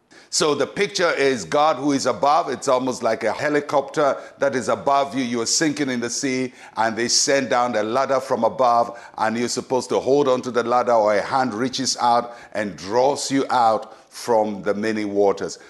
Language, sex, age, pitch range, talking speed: English, male, 60-79, 120-145 Hz, 200 wpm